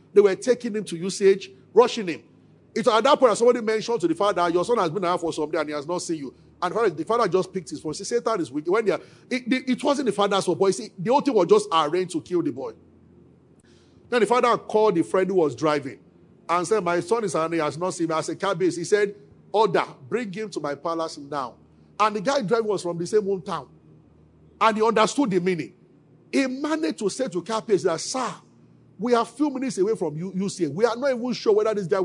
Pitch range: 165-260 Hz